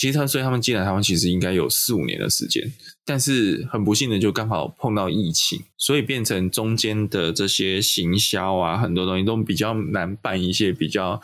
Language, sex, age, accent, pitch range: Chinese, male, 20-39, native, 90-115 Hz